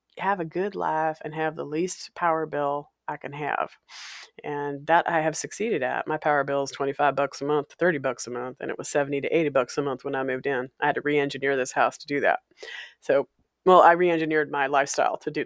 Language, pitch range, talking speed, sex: English, 145-235 Hz, 235 wpm, female